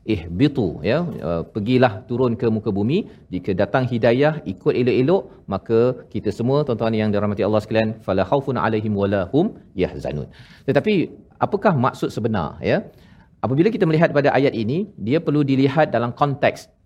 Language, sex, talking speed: Malayalam, male, 155 wpm